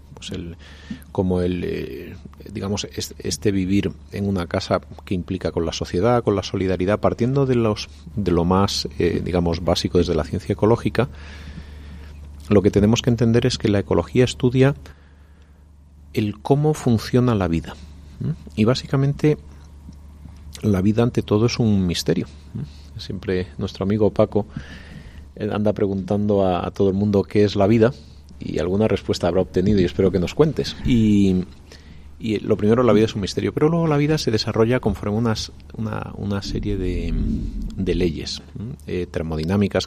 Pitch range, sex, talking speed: 80-110 Hz, male, 165 wpm